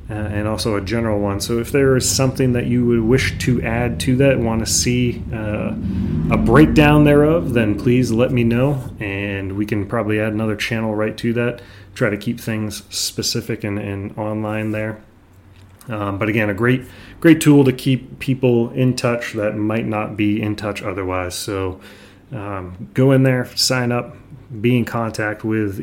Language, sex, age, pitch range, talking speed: English, male, 30-49, 105-125 Hz, 185 wpm